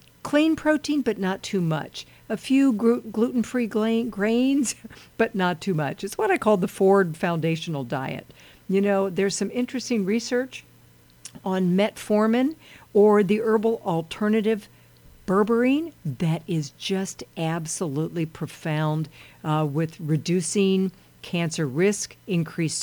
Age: 50-69